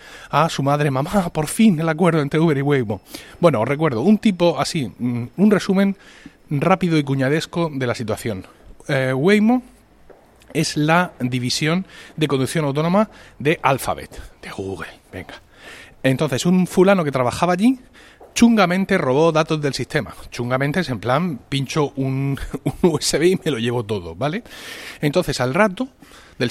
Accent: Spanish